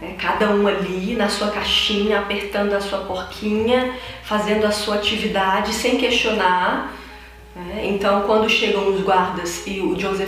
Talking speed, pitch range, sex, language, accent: 150 wpm, 195-260 Hz, female, Portuguese, Brazilian